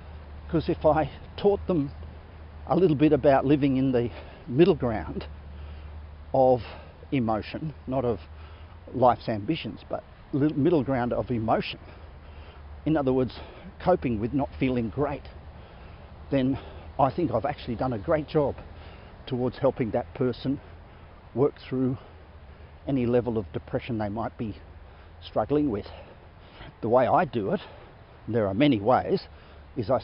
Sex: male